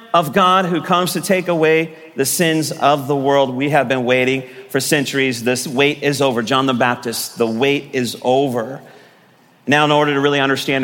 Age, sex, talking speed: 40-59, male, 195 wpm